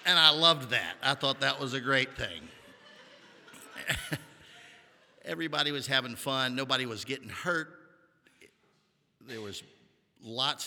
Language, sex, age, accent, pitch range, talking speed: English, male, 50-69, American, 115-150 Hz, 125 wpm